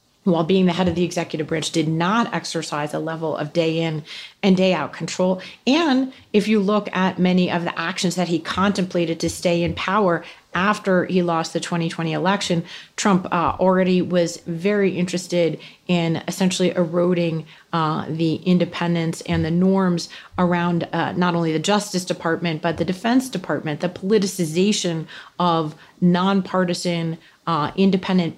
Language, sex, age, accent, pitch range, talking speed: English, female, 30-49, American, 170-200 Hz, 155 wpm